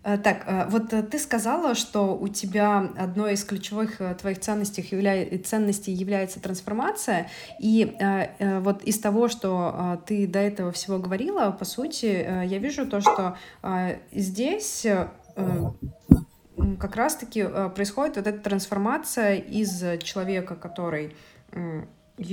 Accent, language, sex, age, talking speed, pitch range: native, Russian, female, 20-39, 110 wpm, 180-210 Hz